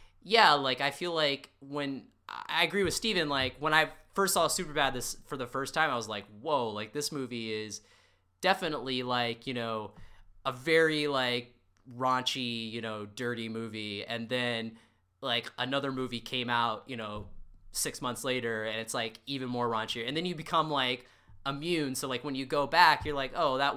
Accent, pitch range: American, 110-150 Hz